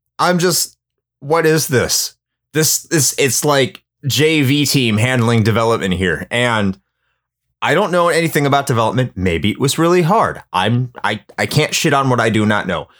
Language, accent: English, American